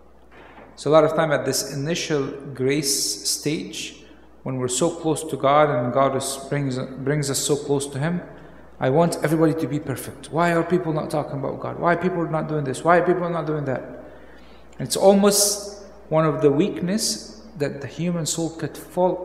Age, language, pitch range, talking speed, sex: 50-69, English, 130-165 Hz, 200 wpm, male